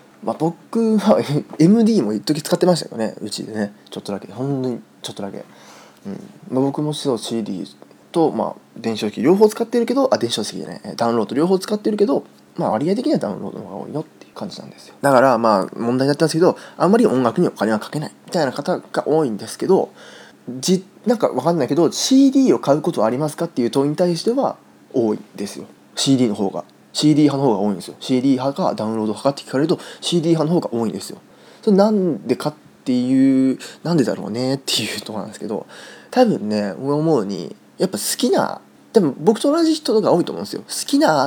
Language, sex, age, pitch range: Japanese, male, 20-39, 115-190 Hz